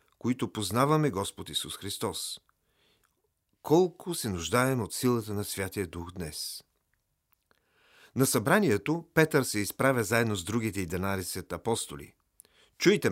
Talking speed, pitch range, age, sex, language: 115 wpm, 95-135 Hz, 40-59, male, Bulgarian